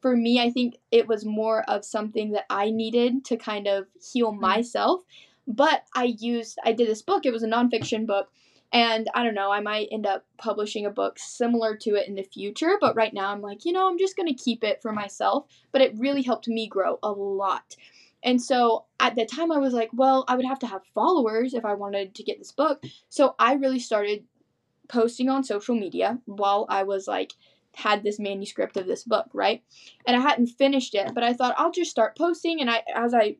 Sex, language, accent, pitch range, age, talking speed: female, English, American, 210-255 Hz, 10-29, 225 wpm